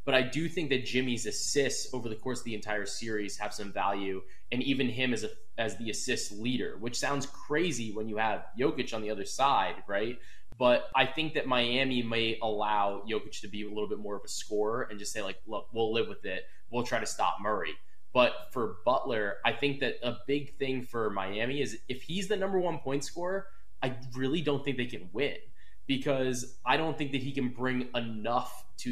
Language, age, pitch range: English, 20-39, 105-135 Hz